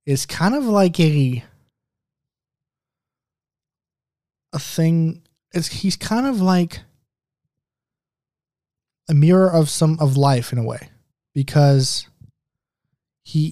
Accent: American